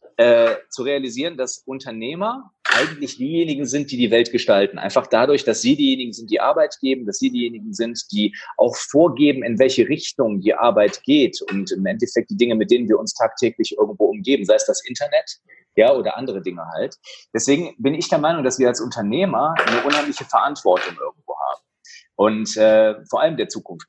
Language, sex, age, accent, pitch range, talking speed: German, male, 30-49, German, 125-205 Hz, 185 wpm